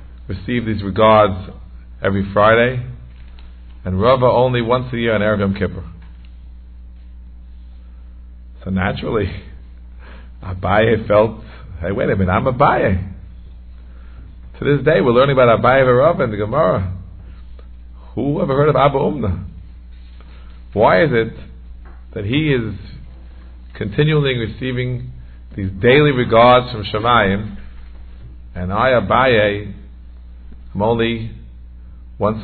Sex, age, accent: male, 50-69, American